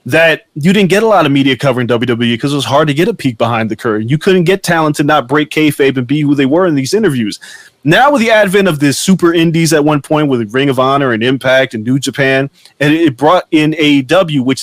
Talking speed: 260 wpm